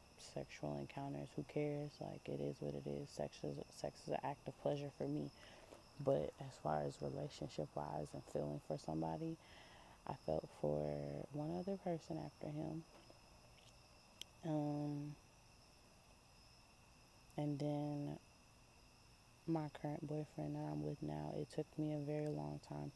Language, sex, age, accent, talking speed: English, female, 20-39, American, 140 wpm